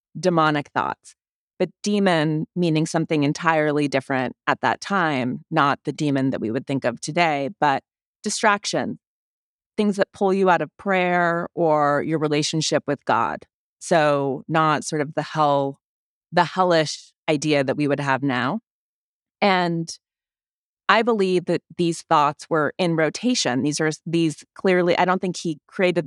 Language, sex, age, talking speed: English, female, 30-49, 150 wpm